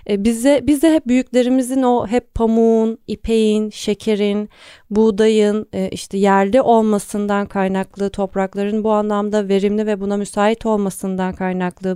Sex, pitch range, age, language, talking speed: female, 195-245 Hz, 30-49, Turkish, 125 wpm